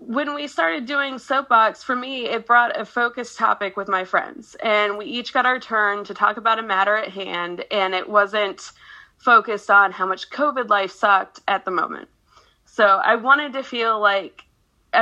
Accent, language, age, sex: American, English, 20-39, female